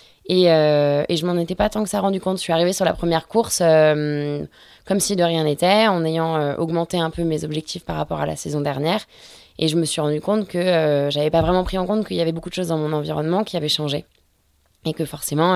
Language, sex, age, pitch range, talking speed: French, female, 20-39, 150-180 Hz, 265 wpm